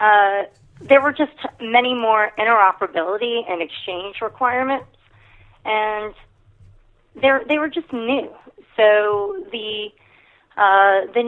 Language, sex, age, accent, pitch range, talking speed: English, female, 30-49, American, 180-230 Hz, 100 wpm